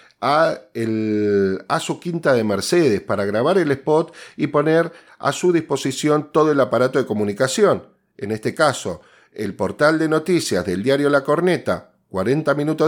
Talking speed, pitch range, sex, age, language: 155 wpm, 110-155 Hz, male, 40-59, Spanish